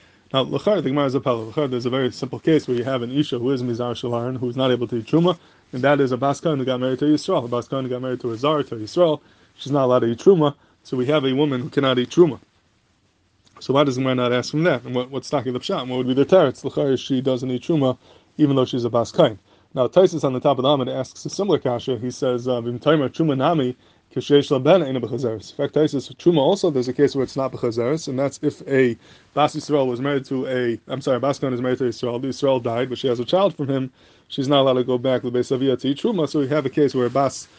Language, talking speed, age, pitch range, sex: English, 265 wpm, 20-39, 125-150 Hz, male